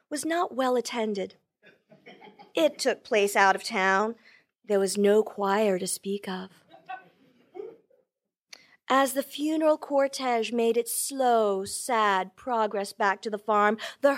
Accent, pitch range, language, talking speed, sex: American, 195-270 Hz, English, 130 wpm, female